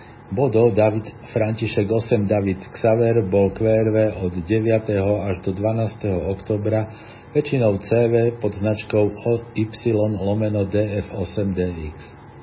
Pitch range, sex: 100-120 Hz, male